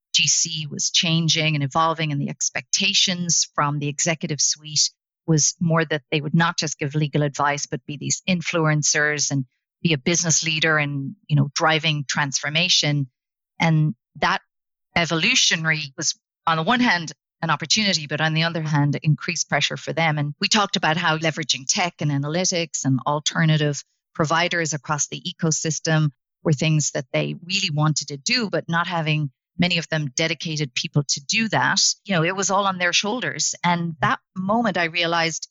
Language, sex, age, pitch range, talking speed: English, female, 50-69, 150-180 Hz, 170 wpm